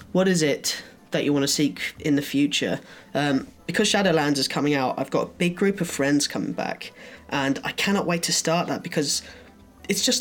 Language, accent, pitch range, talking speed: English, British, 145-185 Hz, 210 wpm